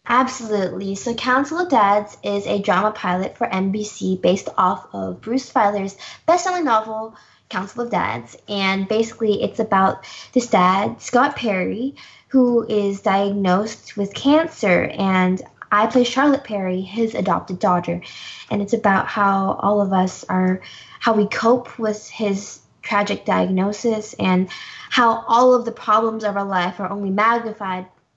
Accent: American